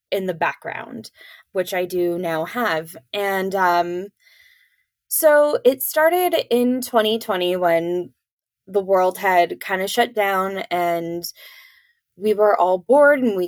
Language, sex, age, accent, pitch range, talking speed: English, female, 10-29, American, 180-240 Hz, 135 wpm